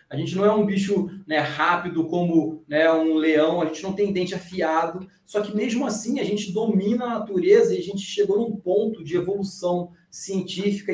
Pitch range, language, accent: 165-205 Hz, Portuguese, Brazilian